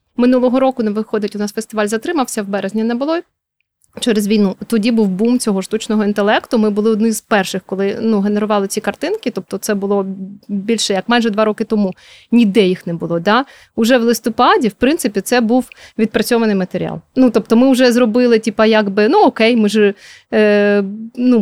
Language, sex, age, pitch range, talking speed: Ukrainian, female, 30-49, 210-235 Hz, 185 wpm